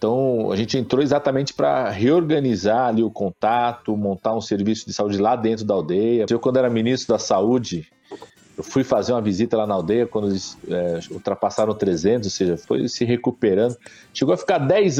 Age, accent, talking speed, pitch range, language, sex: 40-59, Brazilian, 185 wpm, 100-125 Hz, Portuguese, male